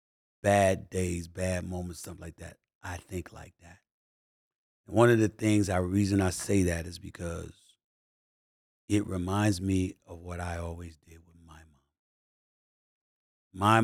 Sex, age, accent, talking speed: male, 40-59, American, 150 wpm